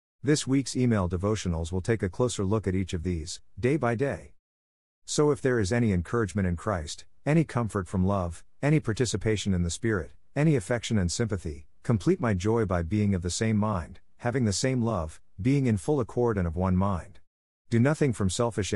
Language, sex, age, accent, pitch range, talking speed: English, male, 50-69, American, 90-120 Hz, 200 wpm